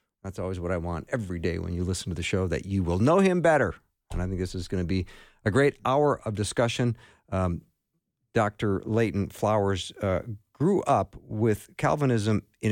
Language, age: English, 50-69